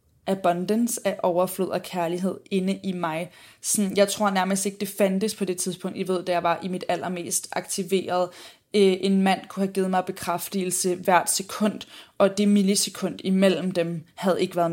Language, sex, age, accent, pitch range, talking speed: Danish, female, 20-39, native, 180-205 Hz, 180 wpm